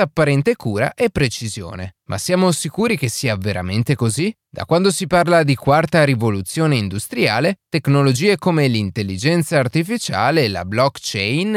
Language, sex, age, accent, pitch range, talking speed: Italian, male, 20-39, native, 110-170 Hz, 130 wpm